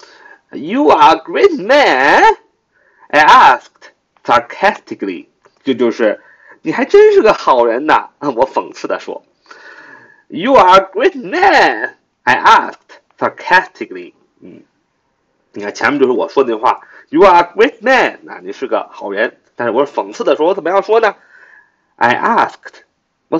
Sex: male